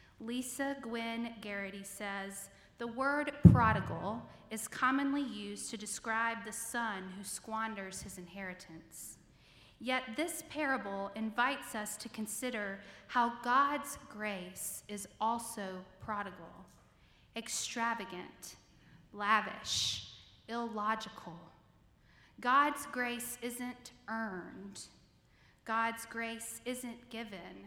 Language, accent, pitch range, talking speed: English, American, 195-245 Hz, 90 wpm